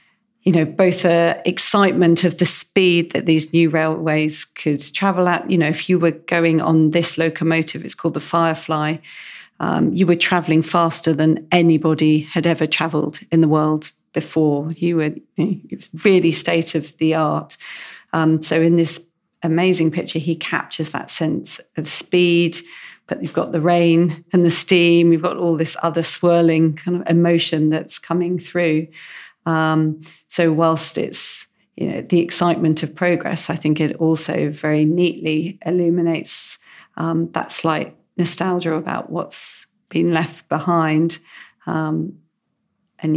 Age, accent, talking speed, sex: 40-59, British, 150 wpm, female